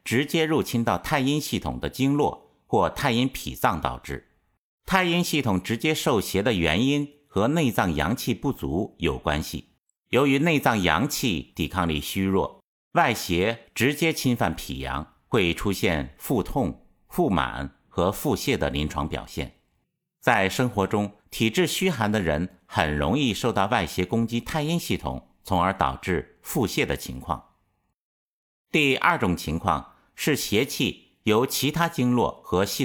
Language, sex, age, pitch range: Chinese, male, 50-69, 80-135 Hz